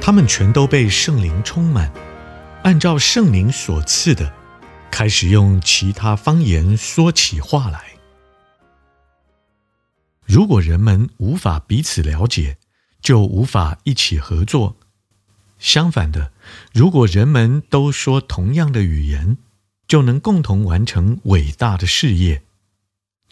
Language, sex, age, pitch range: Chinese, male, 50-69, 95-130 Hz